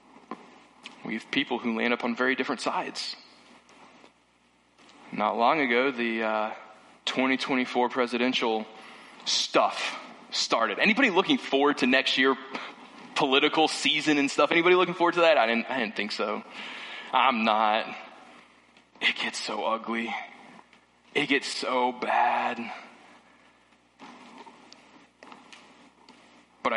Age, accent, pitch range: 20-39, American, 120-150 Hz